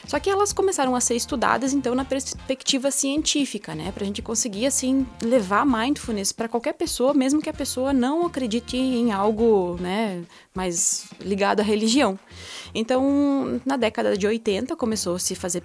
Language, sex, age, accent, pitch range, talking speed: Portuguese, female, 20-39, Brazilian, 210-280 Hz, 165 wpm